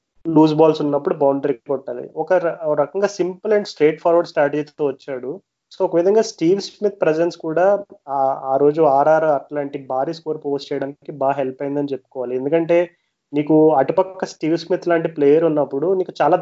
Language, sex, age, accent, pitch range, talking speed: Telugu, male, 30-49, native, 140-160 Hz, 155 wpm